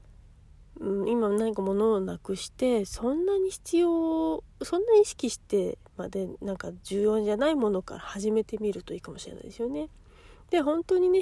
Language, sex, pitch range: Japanese, female, 200-275 Hz